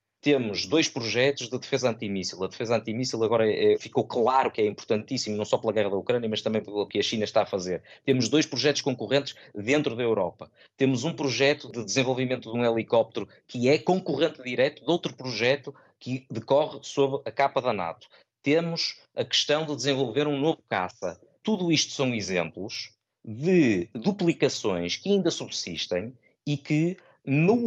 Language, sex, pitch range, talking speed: Portuguese, male, 110-145 Hz, 170 wpm